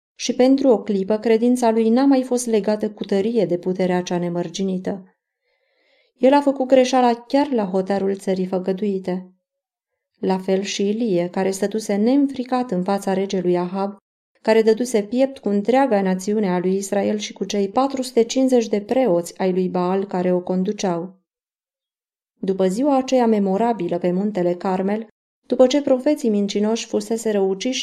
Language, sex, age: Romanian, female, 20-39